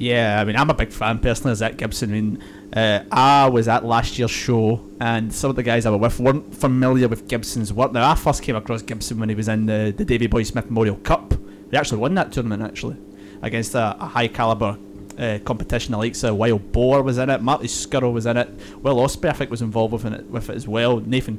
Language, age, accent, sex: English, 20-39, British, male